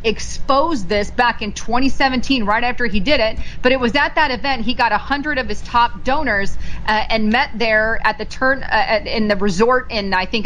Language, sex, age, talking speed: English, female, 30-49, 220 wpm